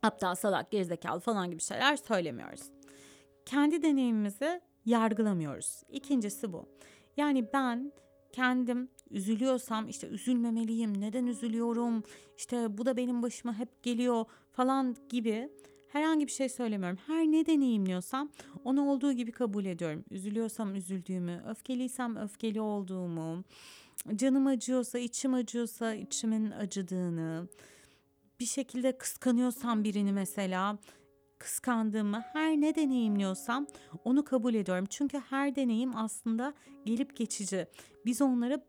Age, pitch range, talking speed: 30-49, 205-260 Hz, 110 wpm